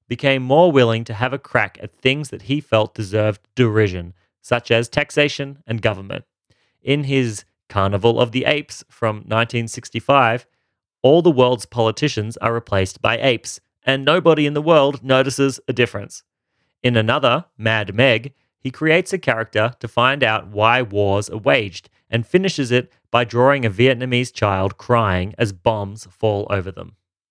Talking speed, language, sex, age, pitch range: 160 wpm, English, male, 30-49, 105-135 Hz